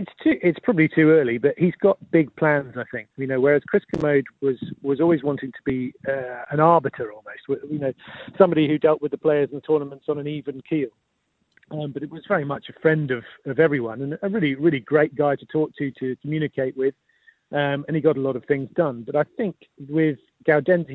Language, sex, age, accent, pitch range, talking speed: English, male, 40-59, British, 130-155 Hz, 225 wpm